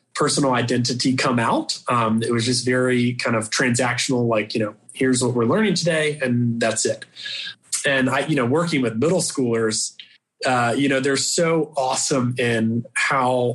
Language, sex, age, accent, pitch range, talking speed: English, male, 30-49, American, 120-150 Hz, 175 wpm